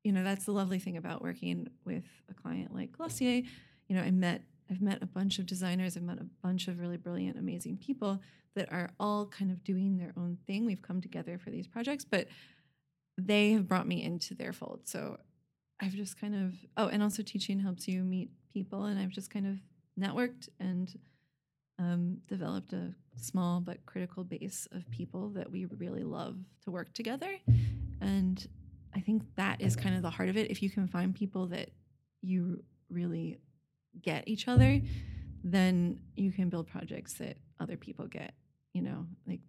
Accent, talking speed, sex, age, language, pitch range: American, 190 wpm, female, 20-39, English, 165-195 Hz